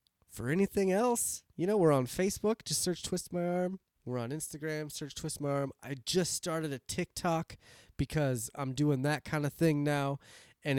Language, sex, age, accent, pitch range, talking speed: English, male, 20-39, American, 105-145 Hz, 190 wpm